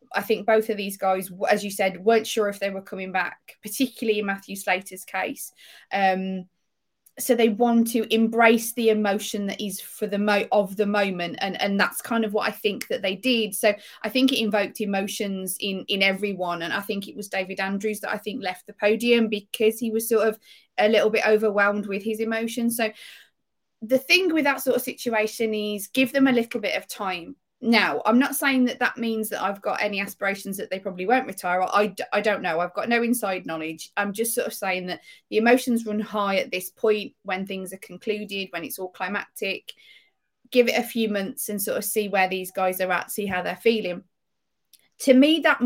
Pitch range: 195-230 Hz